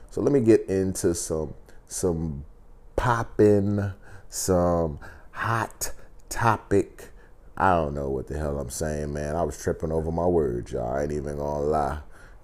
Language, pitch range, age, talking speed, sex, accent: English, 80-95 Hz, 30-49, 160 wpm, male, American